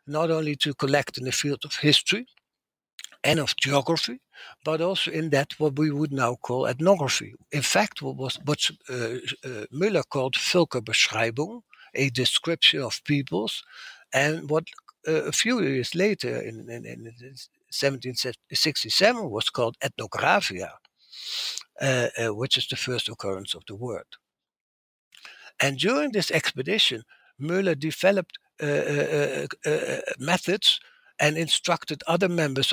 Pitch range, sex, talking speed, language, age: 130-165 Hz, male, 130 wpm, English, 60-79